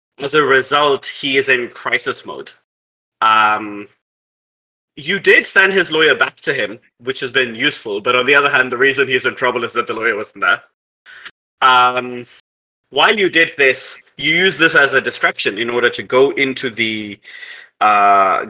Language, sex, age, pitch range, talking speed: English, male, 30-49, 115-195 Hz, 180 wpm